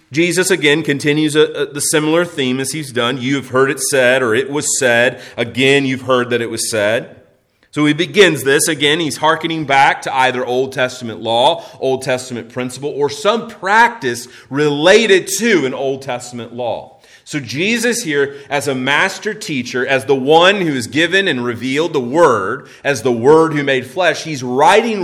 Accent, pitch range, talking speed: American, 130-190 Hz, 175 wpm